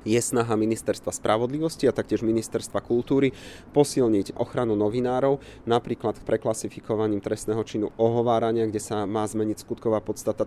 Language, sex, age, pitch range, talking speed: Slovak, male, 30-49, 105-115 Hz, 130 wpm